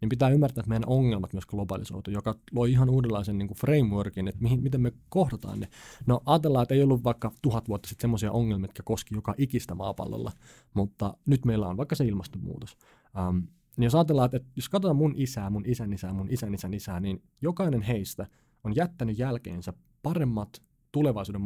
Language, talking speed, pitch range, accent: Finnish, 185 wpm, 105-135 Hz, native